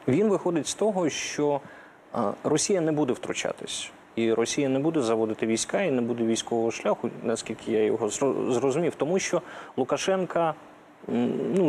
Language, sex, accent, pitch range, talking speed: Ukrainian, male, native, 120-160 Hz, 145 wpm